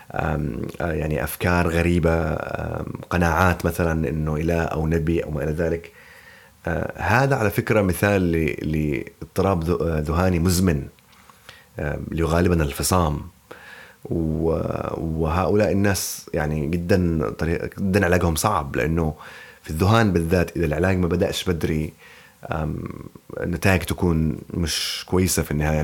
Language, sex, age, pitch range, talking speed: Arabic, male, 30-49, 80-95 Hz, 105 wpm